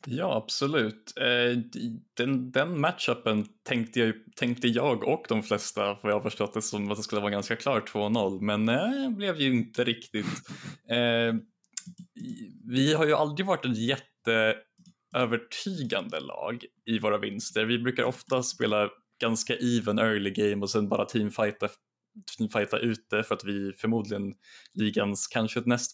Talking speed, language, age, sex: 155 wpm, Swedish, 20-39, male